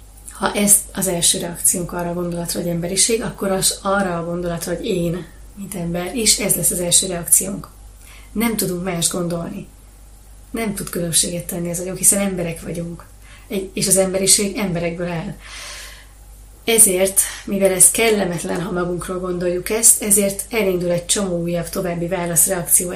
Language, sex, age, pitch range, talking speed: Hungarian, female, 30-49, 175-200 Hz, 150 wpm